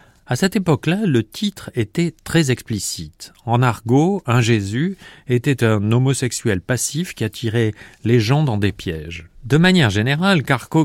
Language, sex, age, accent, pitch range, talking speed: French, male, 40-59, French, 110-145 Hz, 150 wpm